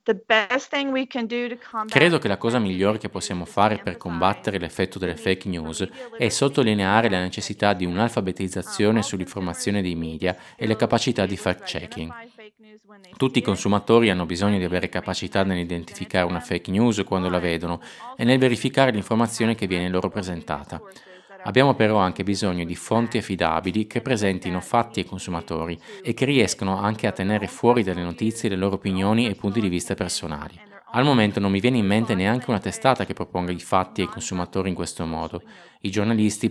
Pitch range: 90-115 Hz